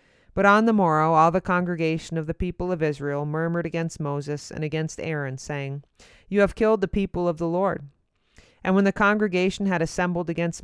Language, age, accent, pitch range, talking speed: English, 40-59, American, 150-180 Hz, 190 wpm